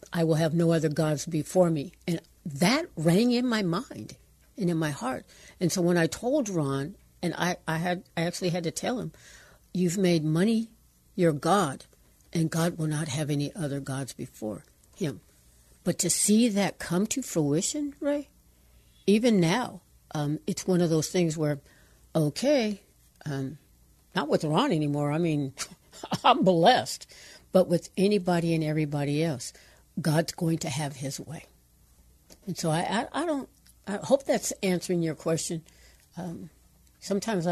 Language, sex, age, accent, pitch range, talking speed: English, female, 60-79, American, 155-185 Hz, 165 wpm